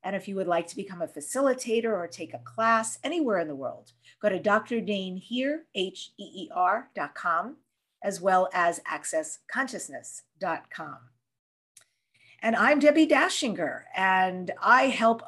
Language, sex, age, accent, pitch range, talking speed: English, female, 50-69, American, 185-240 Hz, 120 wpm